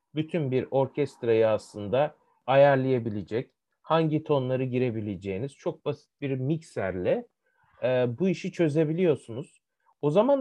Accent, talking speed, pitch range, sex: native, 105 wpm, 120-160 Hz, male